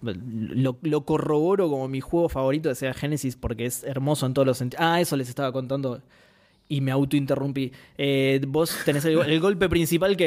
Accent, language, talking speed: Argentinian, Spanish, 185 wpm